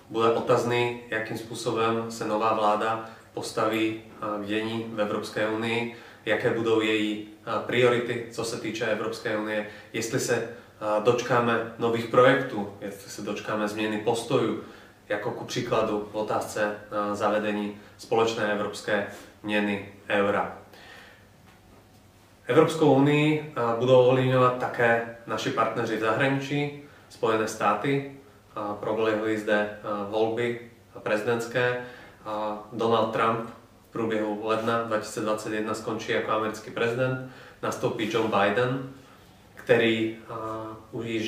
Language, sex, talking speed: Czech, male, 105 wpm